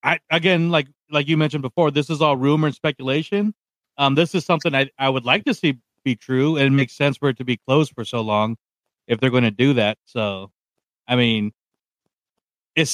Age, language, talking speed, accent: 40-59, English, 220 wpm, American